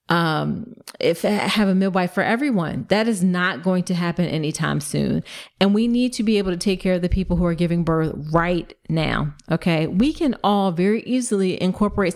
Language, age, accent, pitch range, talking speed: English, 30-49, American, 170-200 Hz, 200 wpm